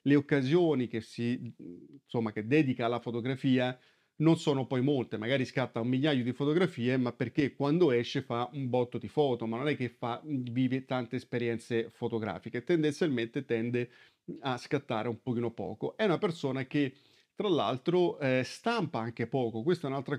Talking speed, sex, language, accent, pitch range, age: 170 wpm, male, Italian, native, 120-155 Hz, 40-59